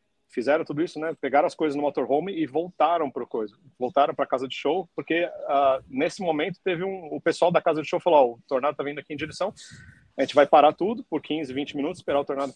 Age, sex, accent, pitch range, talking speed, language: 40-59, male, Brazilian, 135-190 Hz, 245 wpm, Portuguese